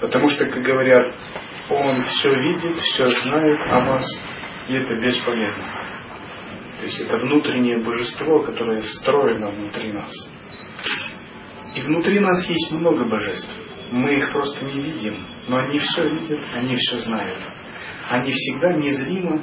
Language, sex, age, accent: Russian, male, 30-49, native